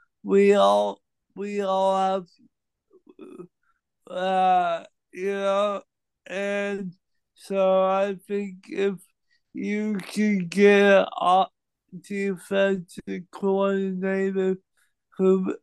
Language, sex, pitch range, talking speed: English, male, 190-225 Hz, 80 wpm